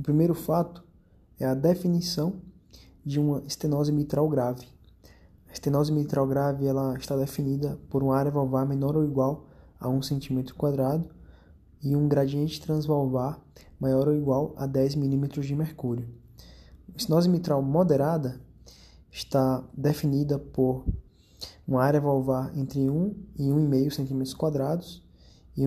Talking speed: 130 wpm